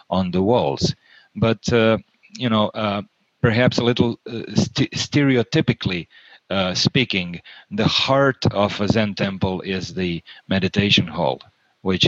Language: English